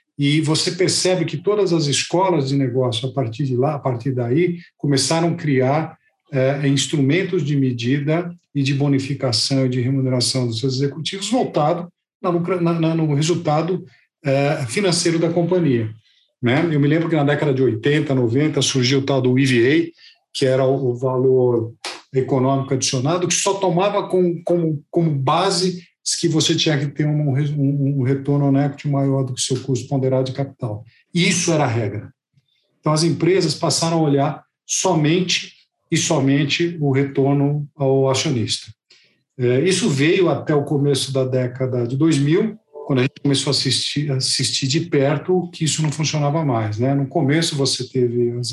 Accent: Brazilian